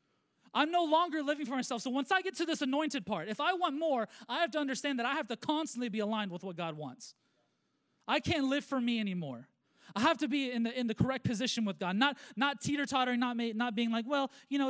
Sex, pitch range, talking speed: male, 195-285 Hz, 255 wpm